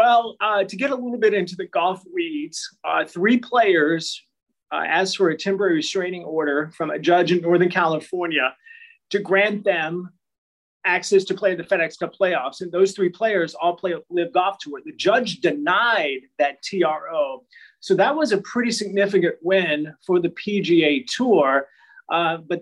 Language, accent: English, American